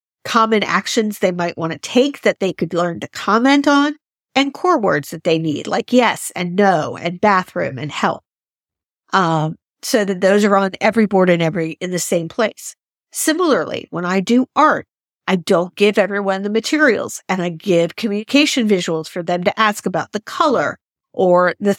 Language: English